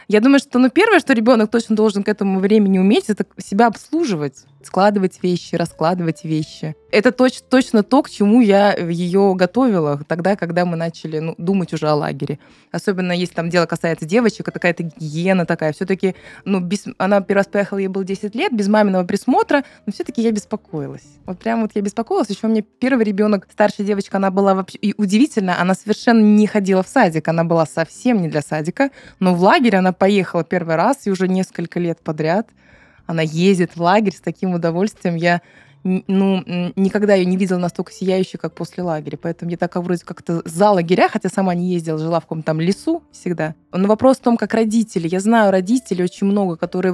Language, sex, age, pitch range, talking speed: Russian, female, 20-39, 175-210 Hz, 195 wpm